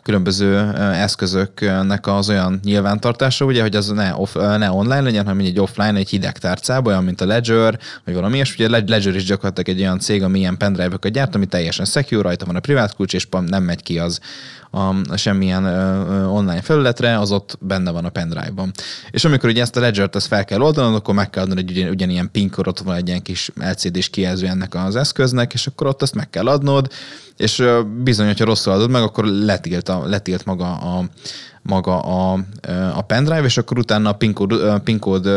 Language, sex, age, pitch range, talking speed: Hungarian, male, 20-39, 95-110 Hz, 190 wpm